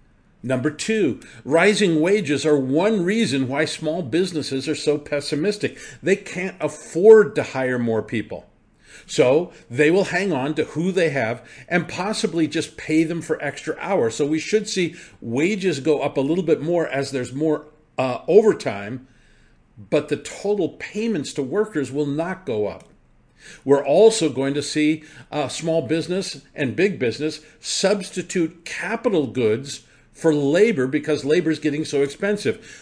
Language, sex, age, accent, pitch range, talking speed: English, male, 50-69, American, 135-175 Hz, 155 wpm